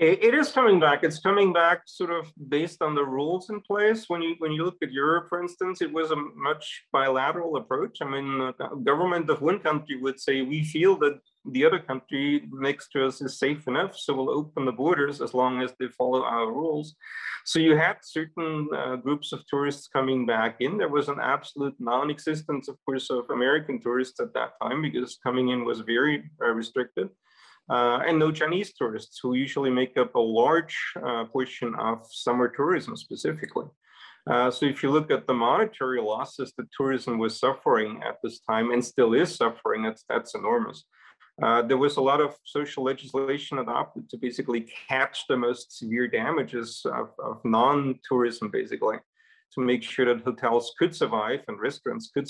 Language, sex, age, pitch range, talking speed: English, male, 30-49, 125-160 Hz, 190 wpm